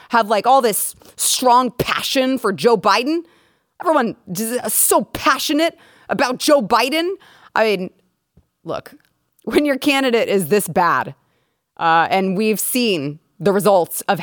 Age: 30-49